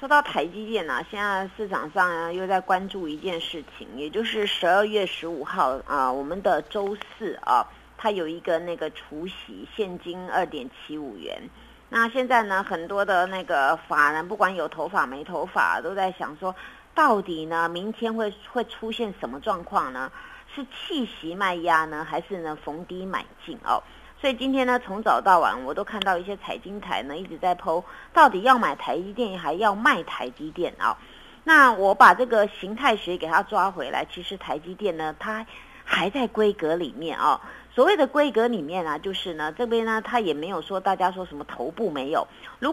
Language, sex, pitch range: Chinese, female, 175-230 Hz